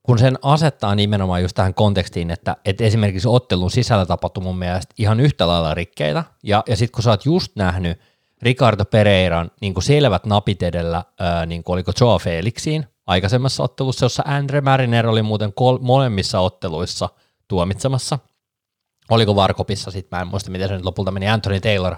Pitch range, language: 90-125 Hz, Finnish